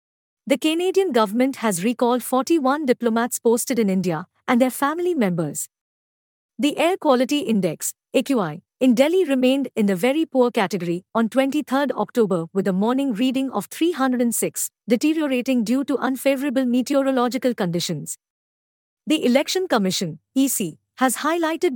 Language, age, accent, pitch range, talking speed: English, 50-69, Indian, 210-265 Hz, 130 wpm